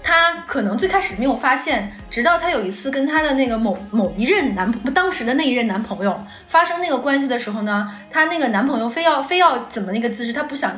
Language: Chinese